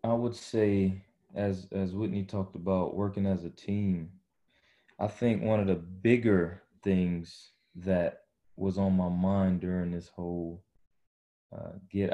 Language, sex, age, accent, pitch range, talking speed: English, male, 20-39, American, 90-100 Hz, 145 wpm